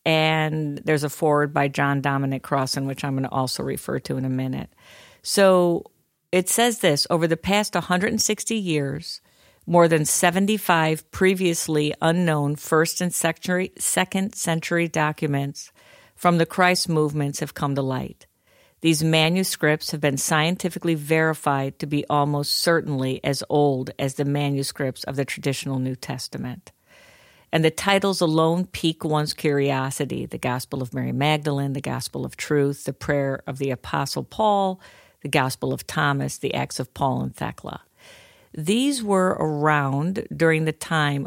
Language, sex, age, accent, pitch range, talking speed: English, female, 50-69, American, 140-180 Hz, 150 wpm